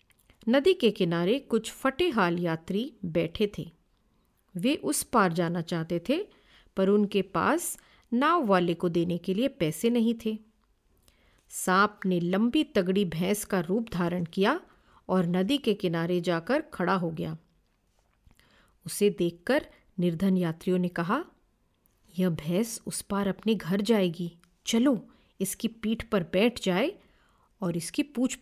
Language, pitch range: Hindi, 175-230 Hz